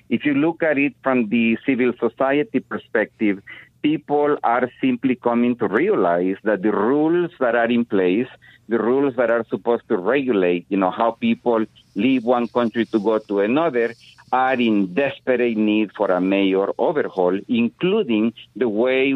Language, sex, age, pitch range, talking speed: English, male, 50-69, 110-135 Hz, 165 wpm